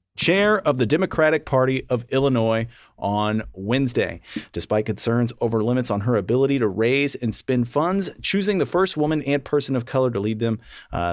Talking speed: 180 wpm